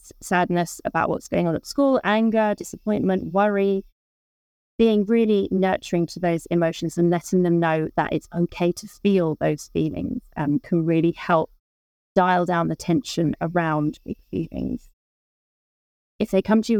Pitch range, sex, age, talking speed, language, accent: 160-195 Hz, female, 30-49, 155 wpm, English, British